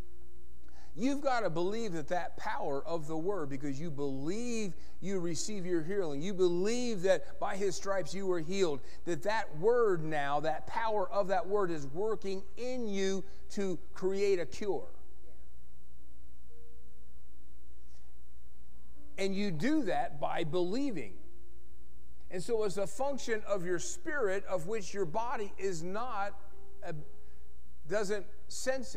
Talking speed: 135 wpm